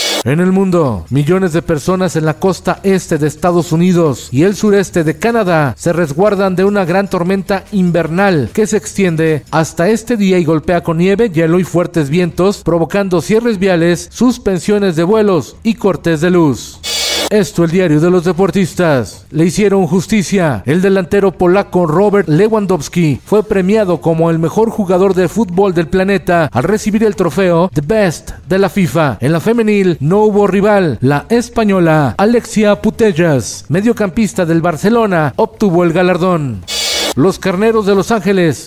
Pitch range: 165-205 Hz